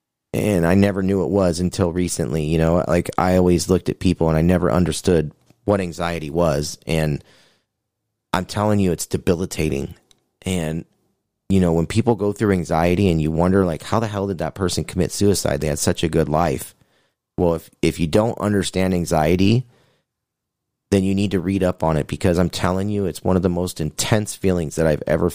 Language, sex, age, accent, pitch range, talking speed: English, male, 30-49, American, 85-100 Hz, 200 wpm